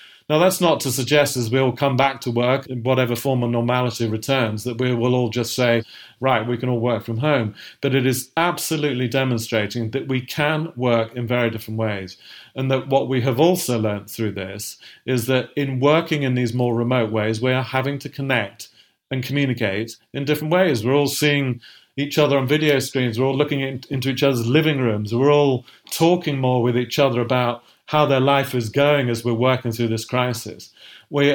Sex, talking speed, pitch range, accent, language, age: male, 205 wpm, 120-140 Hz, British, English, 40-59